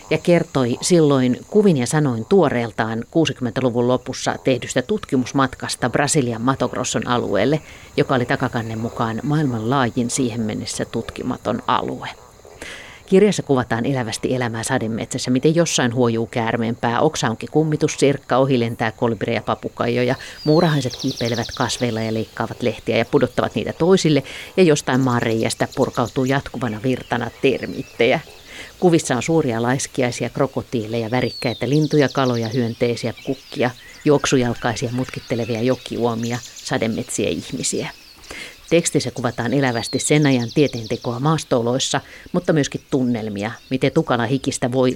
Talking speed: 115 wpm